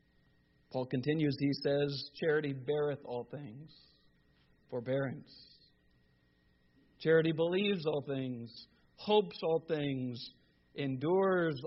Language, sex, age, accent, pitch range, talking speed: Spanish, male, 50-69, American, 135-180 Hz, 85 wpm